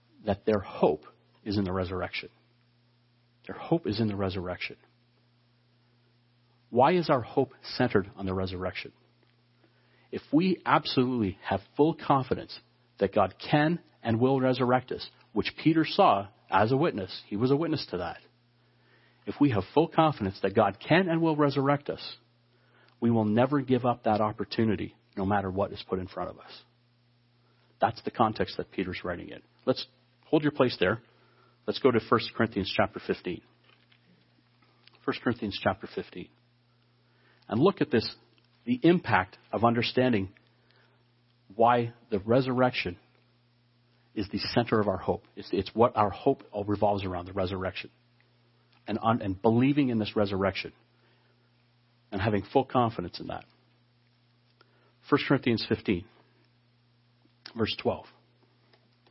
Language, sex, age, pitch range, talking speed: English, male, 40-59, 105-125 Hz, 140 wpm